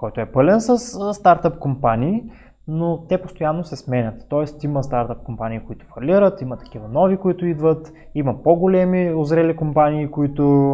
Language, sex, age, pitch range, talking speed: Bulgarian, male, 20-39, 120-150 Hz, 150 wpm